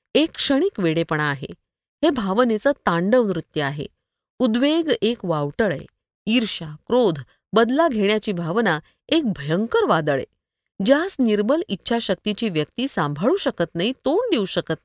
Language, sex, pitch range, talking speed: Marathi, female, 175-255 Hz, 115 wpm